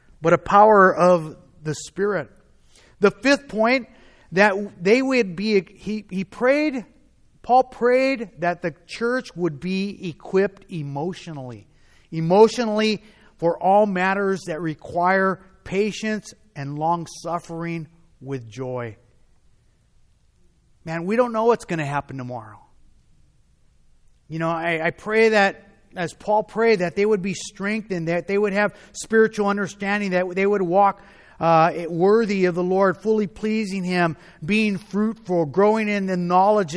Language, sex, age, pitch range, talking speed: English, male, 30-49, 170-215 Hz, 135 wpm